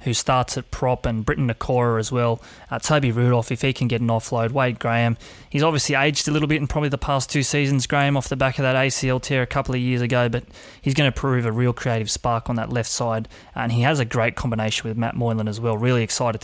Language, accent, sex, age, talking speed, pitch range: English, Australian, male, 20-39, 260 wpm, 120-140 Hz